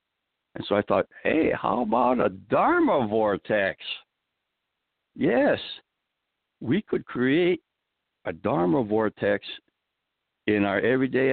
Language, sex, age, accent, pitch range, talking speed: English, male, 60-79, American, 95-115 Hz, 105 wpm